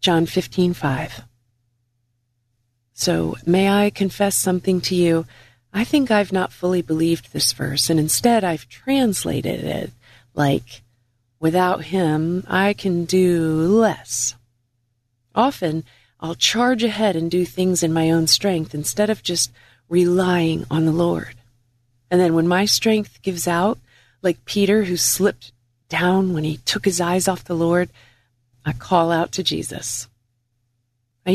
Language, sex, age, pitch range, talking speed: English, female, 40-59, 120-190 Hz, 140 wpm